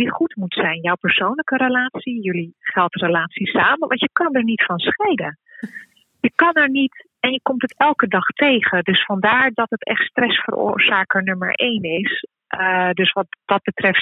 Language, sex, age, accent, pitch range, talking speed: Dutch, female, 30-49, Dutch, 180-230 Hz, 175 wpm